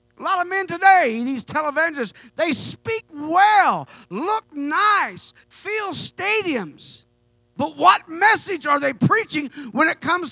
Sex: male